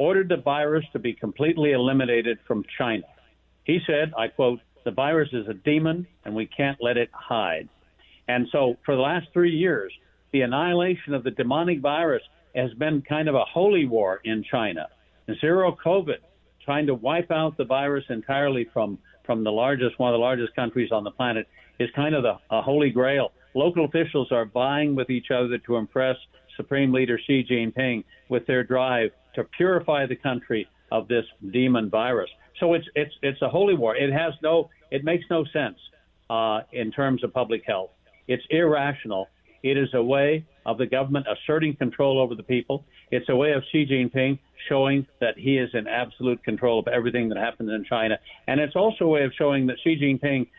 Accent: American